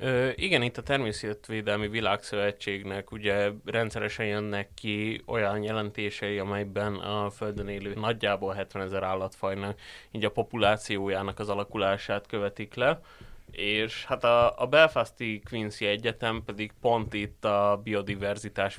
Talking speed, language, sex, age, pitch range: 125 wpm, Hungarian, male, 20-39, 100-115 Hz